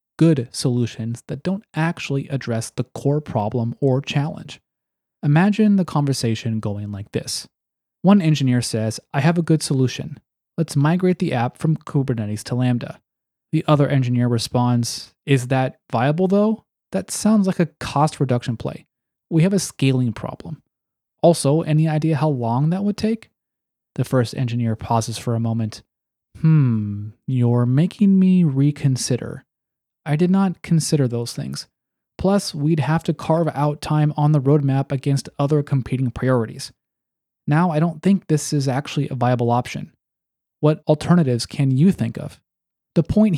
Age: 20-39